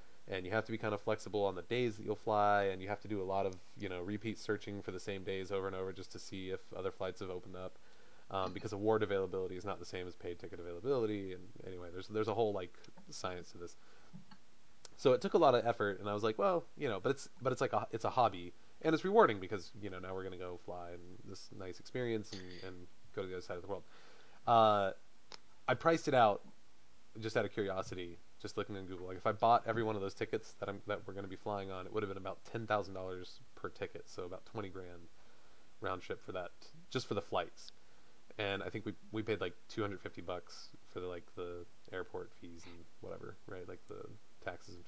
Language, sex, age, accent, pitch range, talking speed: English, male, 20-39, American, 95-115 Hz, 250 wpm